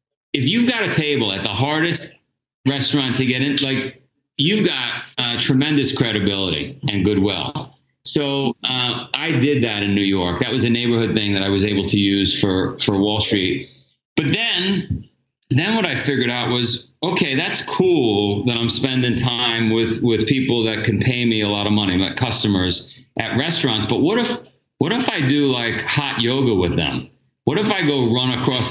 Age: 40-59